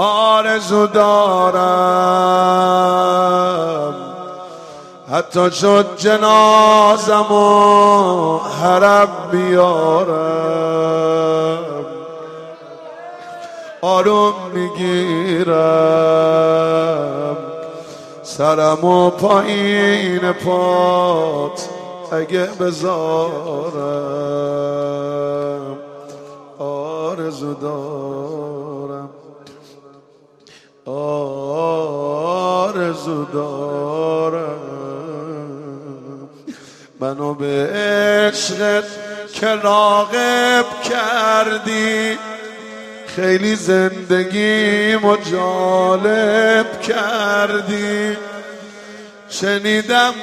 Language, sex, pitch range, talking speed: Persian, male, 160-215 Hz, 35 wpm